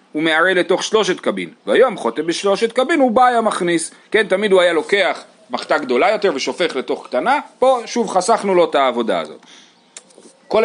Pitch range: 150-195 Hz